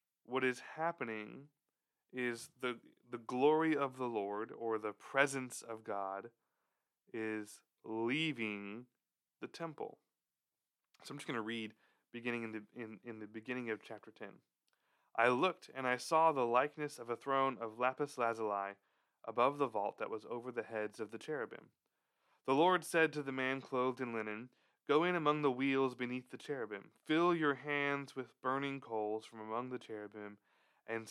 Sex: male